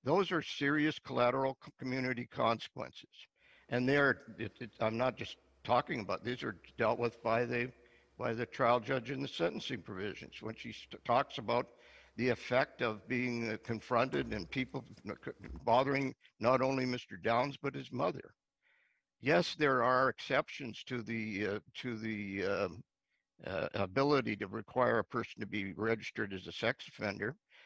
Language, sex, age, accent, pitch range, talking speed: English, male, 60-79, American, 105-130 Hz, 150 wpm